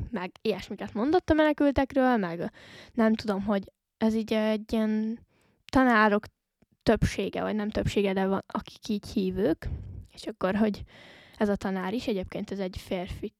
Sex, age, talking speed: female, 10-29, 150 wpm